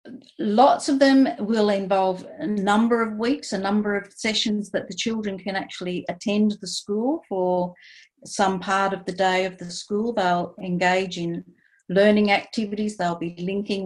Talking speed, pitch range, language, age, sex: 165 wpm, 185-225 Hz, English, 50-69, female